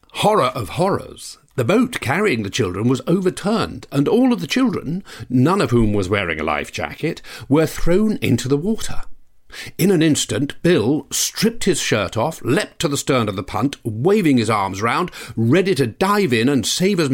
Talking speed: 185 wpm